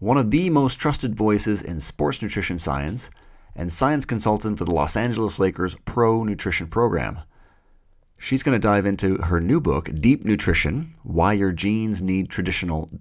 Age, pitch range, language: 40-59, 85-105 Hz, English